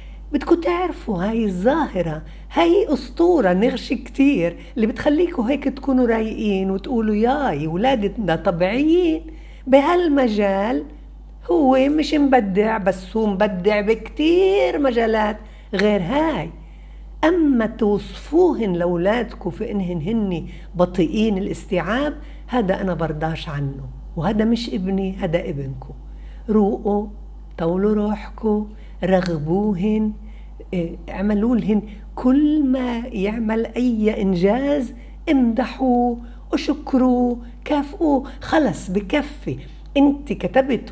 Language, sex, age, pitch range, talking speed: Arabic, female, 60-79, 190-270 Hz, 90 wpm